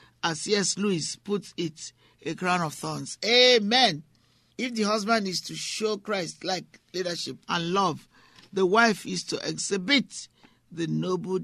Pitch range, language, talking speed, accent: 130-195 Hz, English, 145 wpm, Nigerian